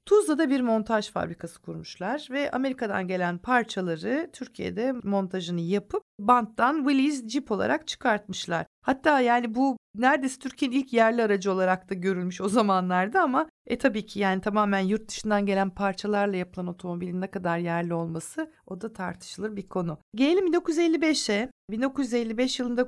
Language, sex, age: Turkish, female, 50-69